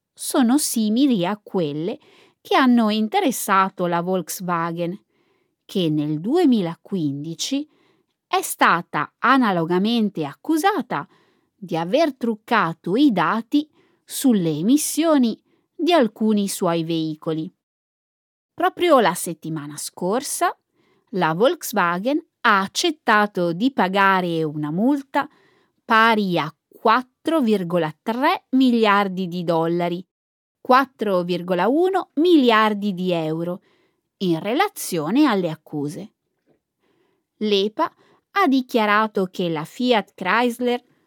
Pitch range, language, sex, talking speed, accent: 175-280 Hz, Italian, female, 90 wpm, native